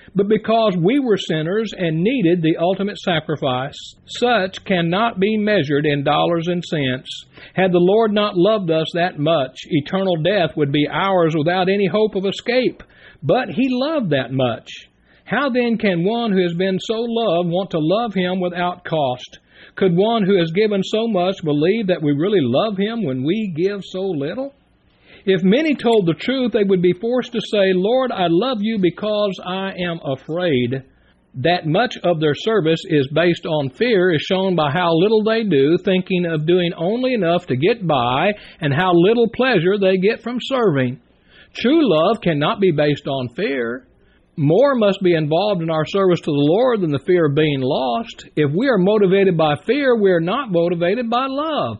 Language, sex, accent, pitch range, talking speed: English, male, American, 165-220 Hz, 185 wpm